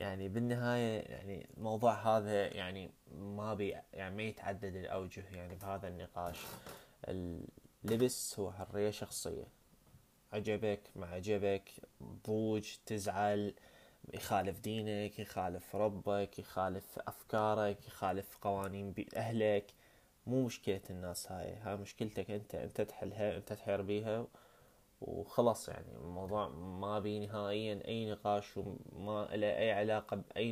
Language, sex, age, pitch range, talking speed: Arabic, male, 20-39, 95-110 Hz, 110 wpm